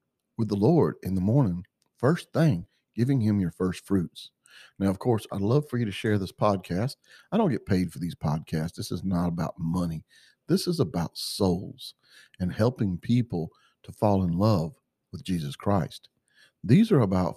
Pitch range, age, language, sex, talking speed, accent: 90-120 Hz, 50-69, English, male, 185 wpm, American